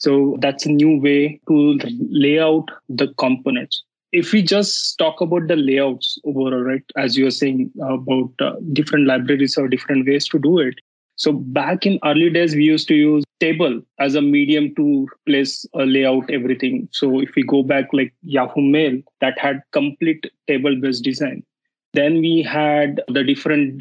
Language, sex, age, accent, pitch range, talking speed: English, male, 20-39, Indian, 135-155 Hz, 175 wpm